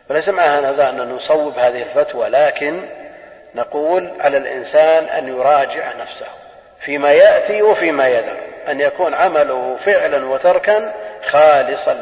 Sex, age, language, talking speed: male, 40-59, Arabic, 120 wpm